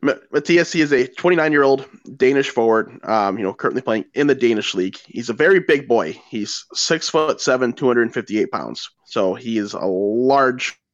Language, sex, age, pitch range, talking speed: English, male, 20-39, 110-130 Hz, 185 wpm